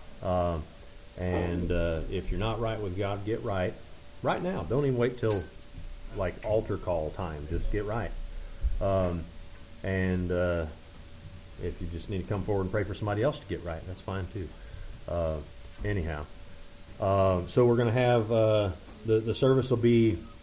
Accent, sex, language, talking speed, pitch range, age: American, male, English, 170 wpm, 90-115 Hz, 40-59